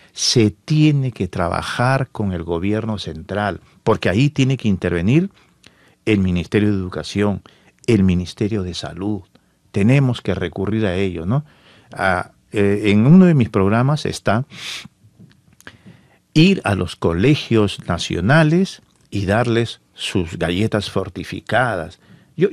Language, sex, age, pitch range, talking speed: Spanish, male, 50-69, 95-145 Hz, 120 wpm